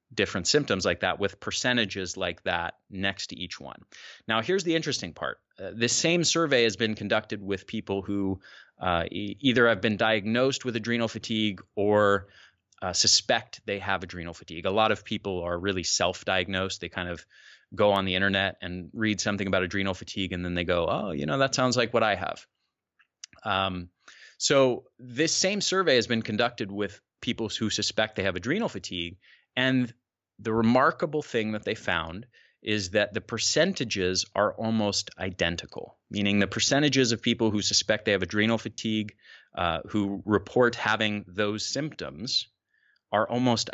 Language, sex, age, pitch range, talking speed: English, male, 30-49, 95-115 Hz, 175 wpm